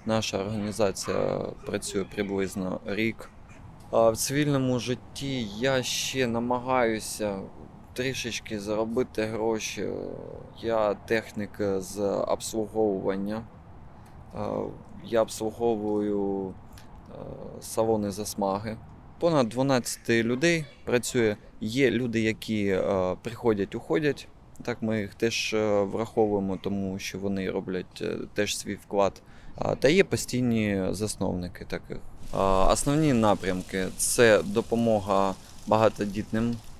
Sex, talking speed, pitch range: male, 90 wpm, 100-115 Hz